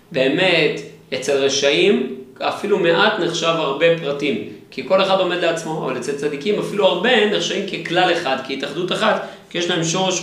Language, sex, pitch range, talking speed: Hebrew, male, 155-185 Hz, 160 wpm